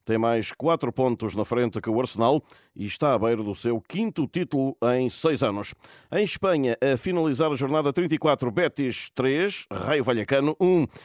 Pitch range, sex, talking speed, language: 110-155 Hz, male, 175 wpm, Portuguese